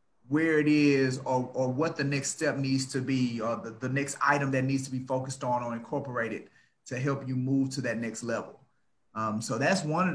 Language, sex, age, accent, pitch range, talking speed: English, male, 30-49, American, 130-170 Hz, 220 wpm